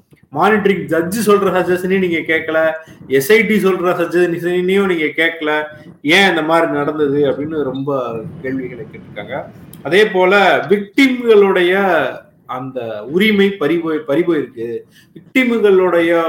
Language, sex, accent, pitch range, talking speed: Tamil, male, native, 140-185 Hz, 50 wpm